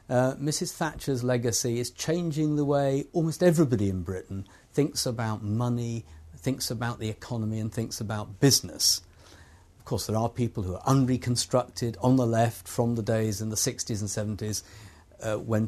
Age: 50-69